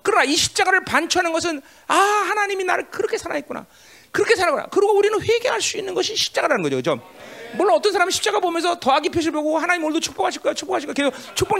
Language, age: Korean, 40-59